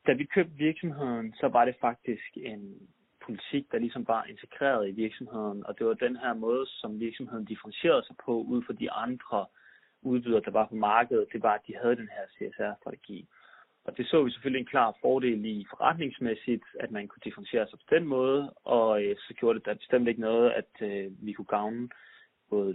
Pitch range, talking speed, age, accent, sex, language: 105-130 Hz, 200 wpm, 30-49, native, male, Danish